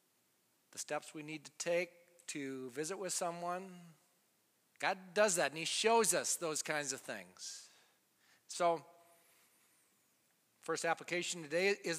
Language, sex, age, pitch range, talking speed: English, male, 40-59, 170-210 Hz, 130 wpm